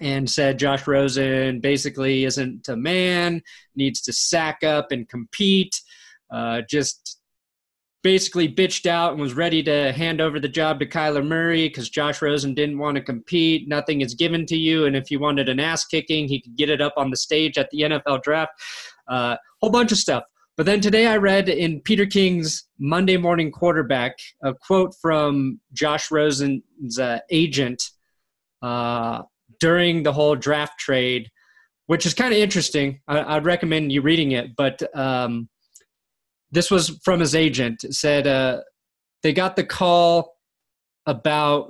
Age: 20-39